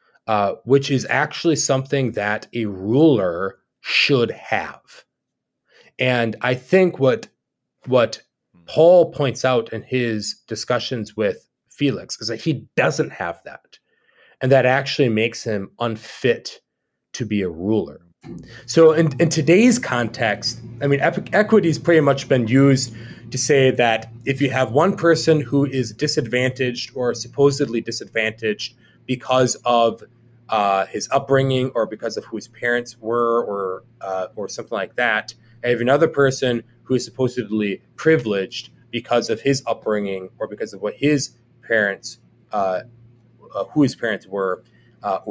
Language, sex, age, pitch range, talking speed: English, male, 30-49, 110-140 Hz, 140 wpm